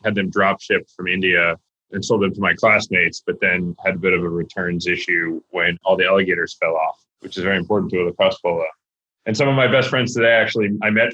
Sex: male